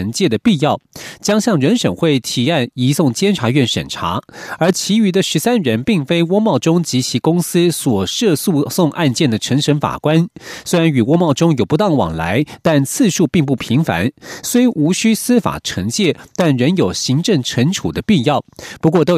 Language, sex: Chinese, male